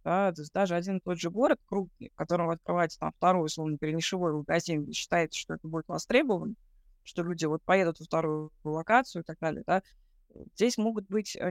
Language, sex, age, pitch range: Russian, female, 20-39, 160-195 Hz